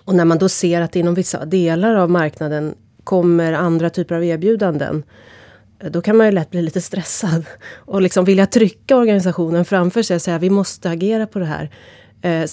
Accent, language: native, Swedish